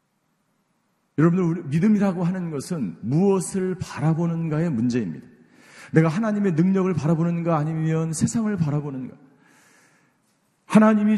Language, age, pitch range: Korean, 40-59, 150-190 Hz